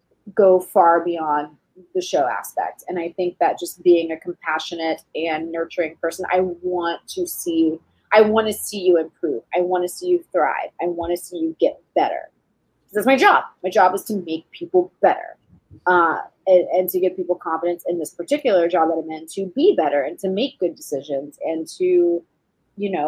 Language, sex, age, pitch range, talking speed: English, female, 30-49, 165-195 Hz, 200 wpm